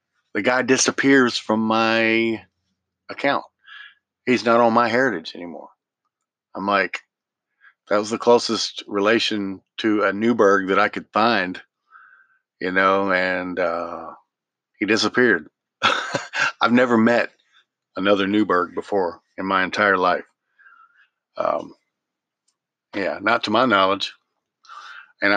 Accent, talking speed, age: American, 115 wpm, 50-69